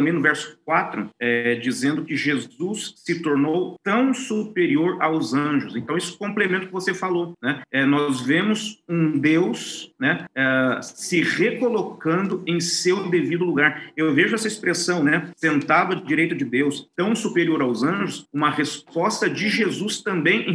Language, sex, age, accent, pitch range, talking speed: Portuguese, male, 40-59, Brazilian, 140-185 Hz, 160 wpm